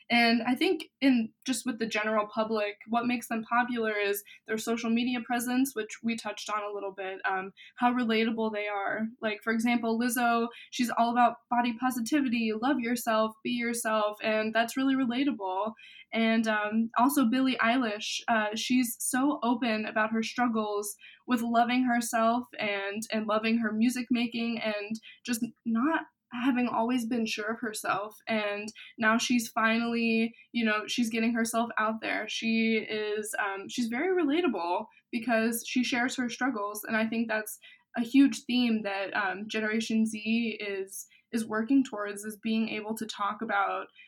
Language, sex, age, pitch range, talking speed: English, female, 20-39, 215-245 Hz, 165 wpm